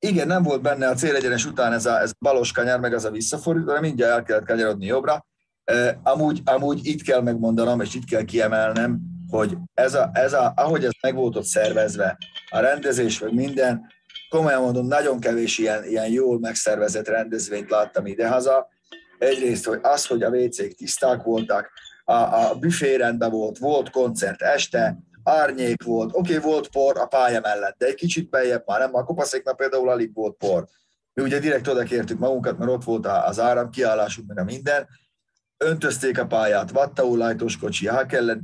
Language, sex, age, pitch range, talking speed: Hungarian, male, 30-49, 110-145 Hz, 185 wpm